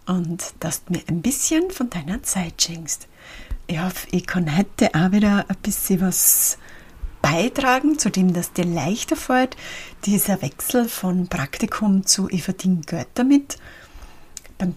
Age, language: 30-49, German